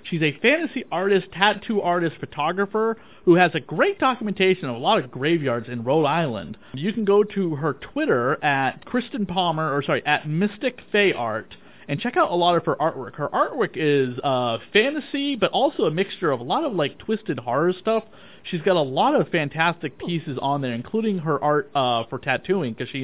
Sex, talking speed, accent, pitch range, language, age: male, 200 wpm, American, 130-190 Hz, English, 30-49